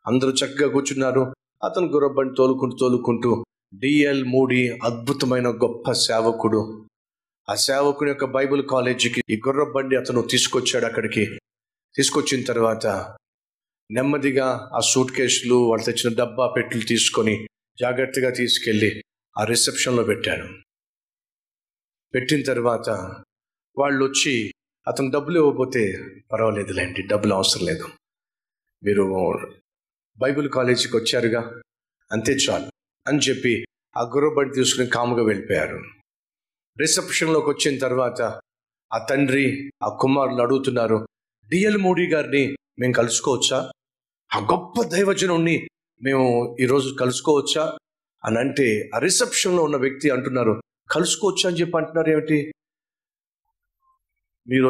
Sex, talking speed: male, 105 wpm